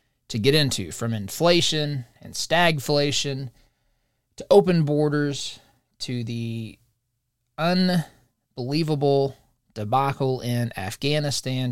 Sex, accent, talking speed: male, American, 80 wpm